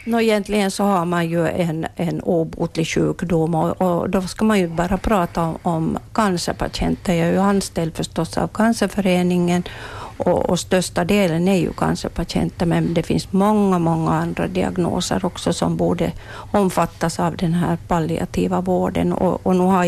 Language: Swedish